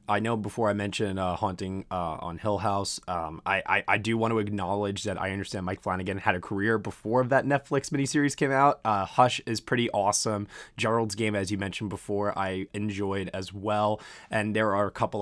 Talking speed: 210 wpm